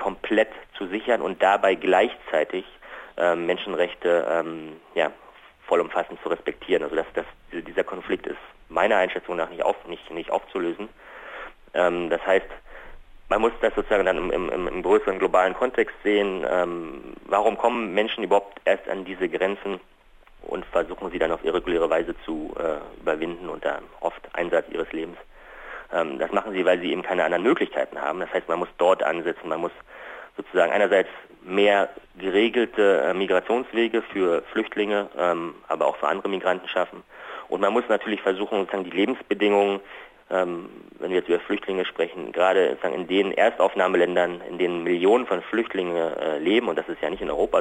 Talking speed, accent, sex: 165 wpm, German, male